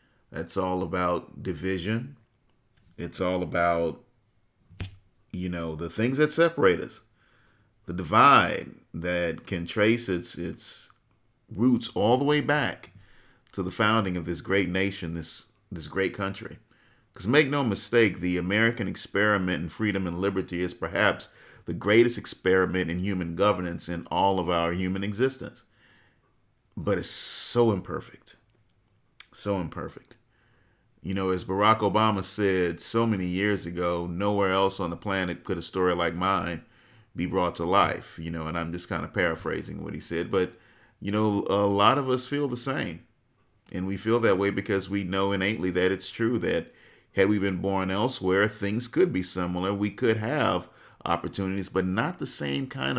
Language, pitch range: English, 90-115 Hz